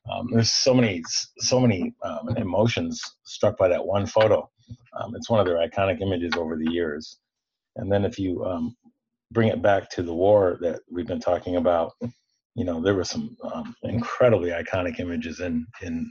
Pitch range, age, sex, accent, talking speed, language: 95-125 Hz, 30-49, male, American, 185 wpm, English